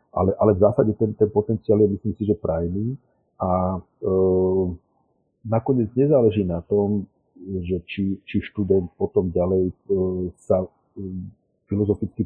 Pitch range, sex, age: 95-105 Hz, male, 50-69